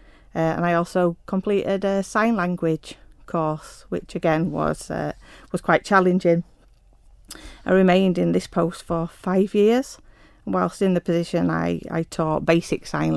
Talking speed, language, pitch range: 155 wpm, English, 155-180 Hz